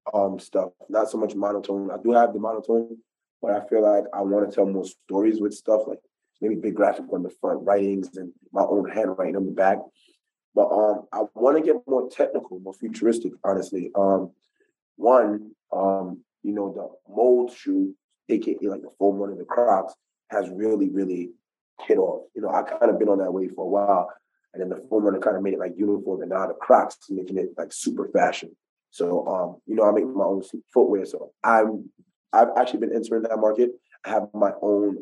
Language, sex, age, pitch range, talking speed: English, male, 20-39, 100-115 Hz, 210 wpm